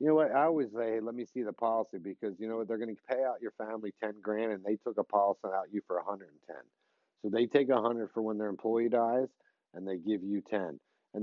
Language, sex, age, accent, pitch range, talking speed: English, male, 40-59, American, 105-125 Hz, 275 wpm